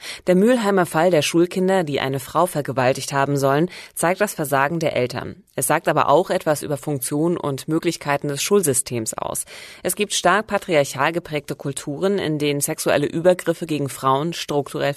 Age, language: 30-49, German